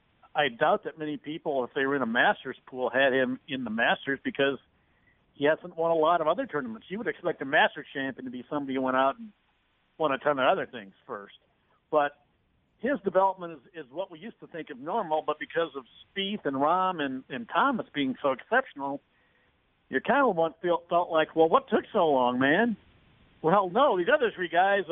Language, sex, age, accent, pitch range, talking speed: English, male, 50-69, American, 130-170 Hz, 210 wpm